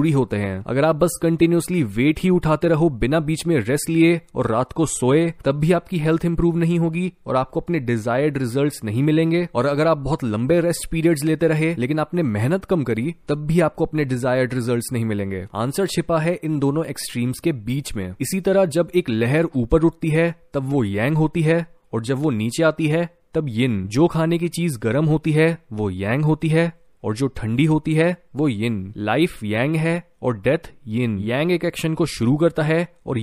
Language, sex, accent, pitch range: Hindi, male, native, 125-170 Hz